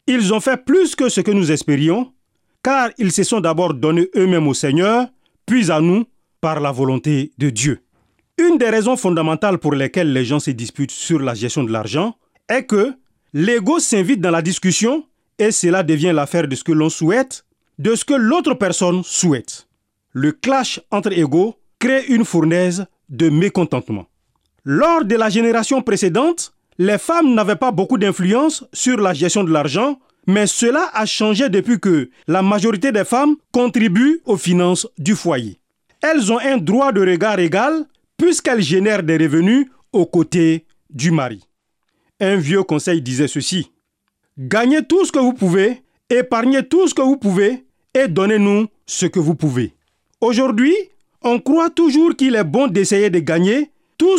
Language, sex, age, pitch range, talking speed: French, male, 40-59, 165-255 Hz, 170 wpm